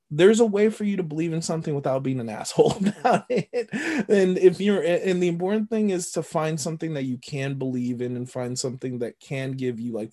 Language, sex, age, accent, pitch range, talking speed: English, male, 20-39, American, 125-160 Hz, 230 wpm